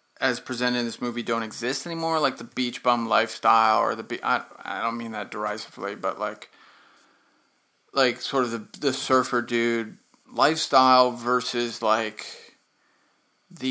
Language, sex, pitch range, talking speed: English, male, 125-160 Hz, 155 wpm